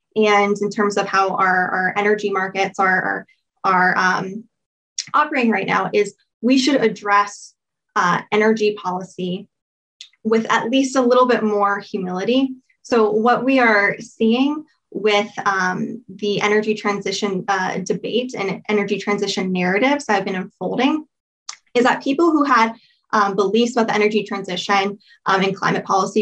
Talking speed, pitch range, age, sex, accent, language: 150 wpm, 200-230 Hz, 20-39, female, American, English